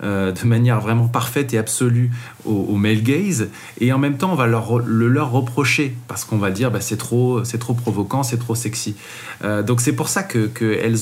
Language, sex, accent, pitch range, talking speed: French, male, French, 110-135 Hz, 215 wpm